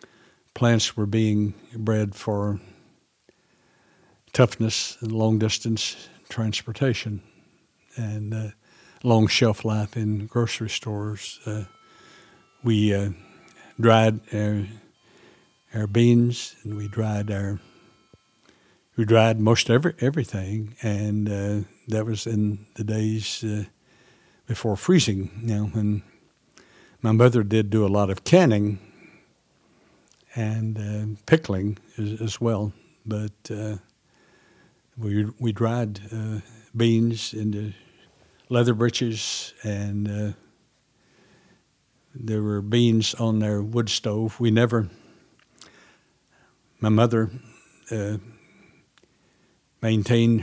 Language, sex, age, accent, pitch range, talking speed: English, male, 60-79, American, 105-115 Hz, 100 wpm